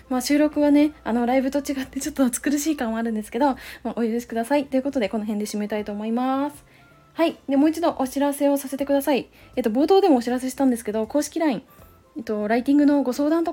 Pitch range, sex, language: 230-290 Hz, female, Japanese